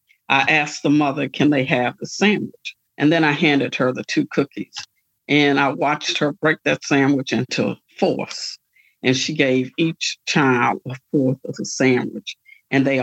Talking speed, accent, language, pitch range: 175 wpm, American, English, 130-155 Hz